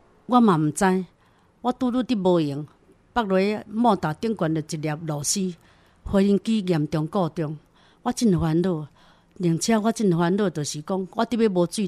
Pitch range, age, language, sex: 160-220 Hz, 60-79, Chinese, female